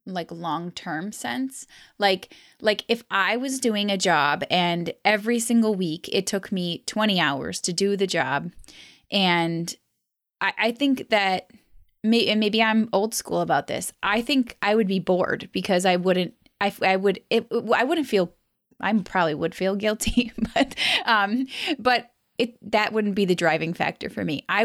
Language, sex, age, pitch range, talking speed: English, female, 20-39, 175-220 Hz, 170 wpm